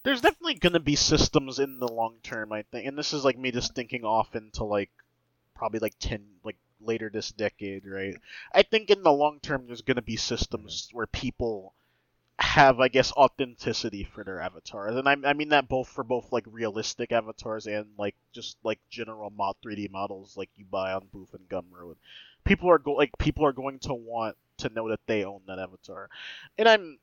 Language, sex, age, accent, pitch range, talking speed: English, male, 20-39, American, 110-135 Hz, 210 wpm